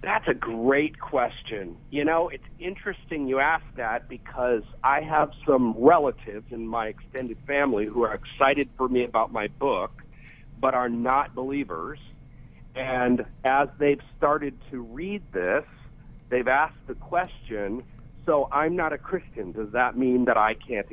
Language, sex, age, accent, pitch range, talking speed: English, male, 50-69, American, 130-170 Hz, 155 wpm